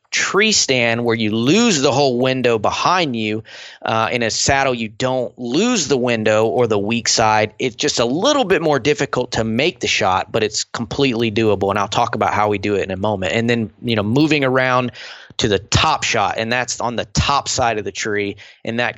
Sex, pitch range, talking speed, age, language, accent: male, 110-130 Hz, 220 wpm, 20-39, English, American